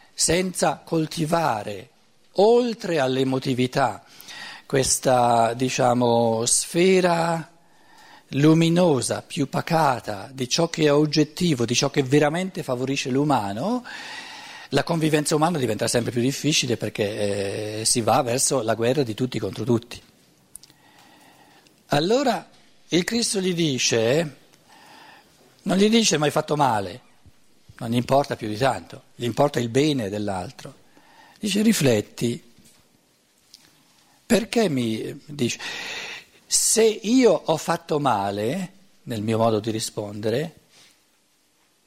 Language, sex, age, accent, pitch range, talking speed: Italian, male, 50-69, native, 125-175 Hz, 110 wpm